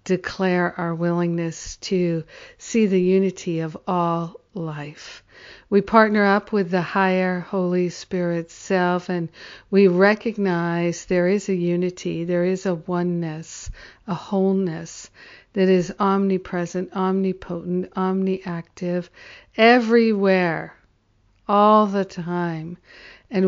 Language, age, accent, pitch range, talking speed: English, 50-69, American, 175-195 Hz, 105 wpm